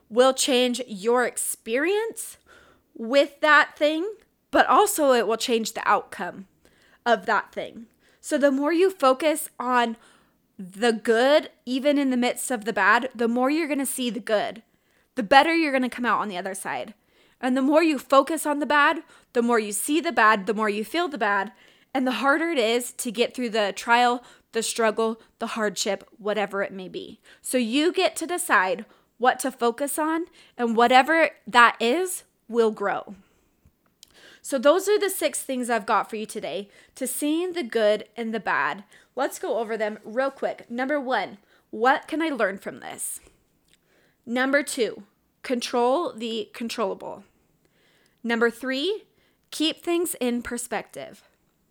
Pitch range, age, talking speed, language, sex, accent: 230-295 Hz, 20-39, 170 wpm, English, female, American